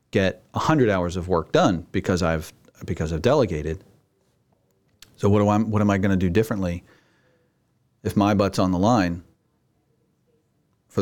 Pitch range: 95-110 Hz